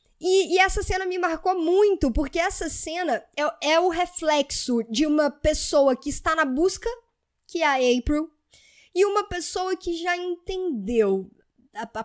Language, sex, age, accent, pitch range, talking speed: Portuguese, female, 10-29, Brazilian, 245-330 Hz, 165 wpm